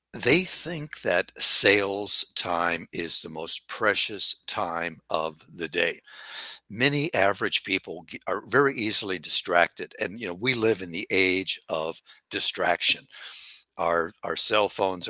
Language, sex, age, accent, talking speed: English, male, 60-79, American, 135 wpm